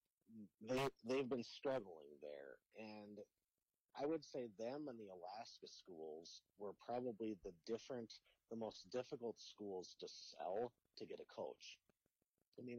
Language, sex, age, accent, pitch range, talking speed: English, male, 30-49, American, 100-130 Hz, 140 wpm